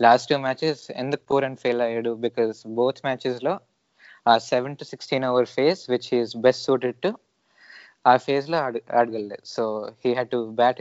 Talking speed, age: 165 wpm, 20-39